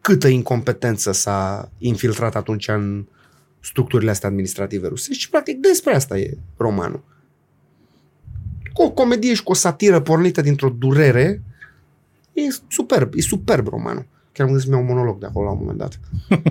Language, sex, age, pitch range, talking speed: Romanian, male, 30-49, 130-195 Hz, 155 wpm